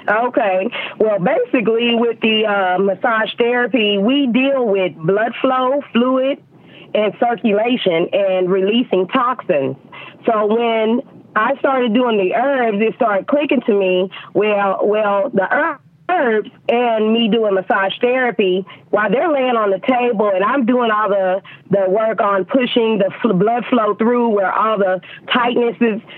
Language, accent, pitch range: English, American, 195-245 Hz